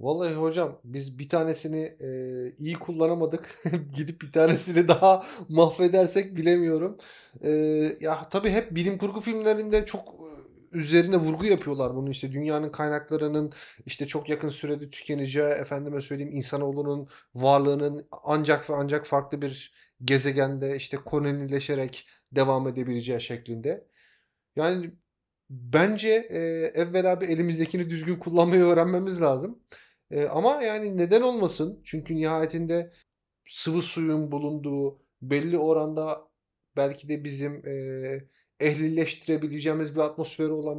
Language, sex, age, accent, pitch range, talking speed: Turkish, male, 30-49, native, 145-170 Hz, 115 wpm